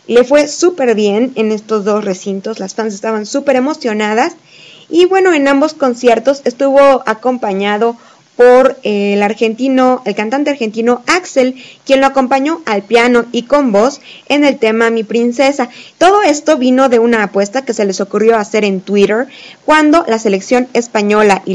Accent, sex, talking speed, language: Mexican, female, 160 wpm, Spanish